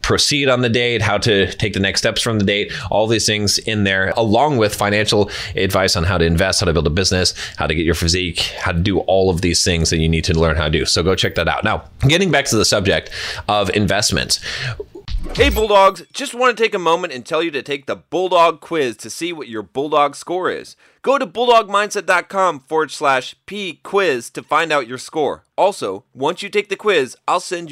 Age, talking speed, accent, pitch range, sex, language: 30-49, 230 wpm, American, 105-160 Hz, male, English